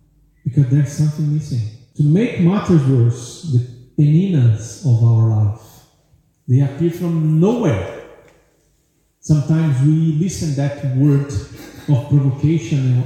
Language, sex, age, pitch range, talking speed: English, male, 40-59, 120-175 Hz, 110 wpm